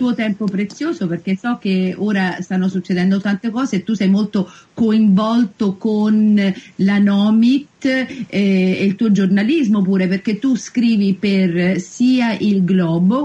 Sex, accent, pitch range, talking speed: female, native, 190-240 Hz, 140 wpm